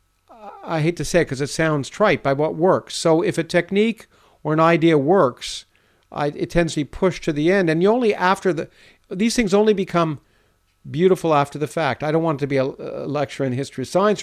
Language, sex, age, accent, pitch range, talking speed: English, male, 50-69, American, 125-170 Hz, 230 wpm